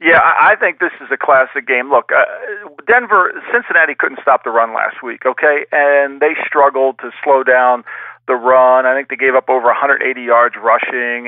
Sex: male